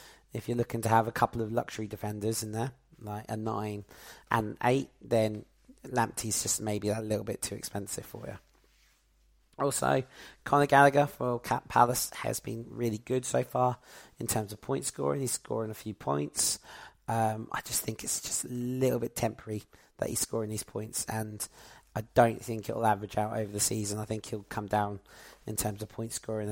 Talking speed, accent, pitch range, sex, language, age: 190 wpm, British, 105-115 Hz, male, English, 30-49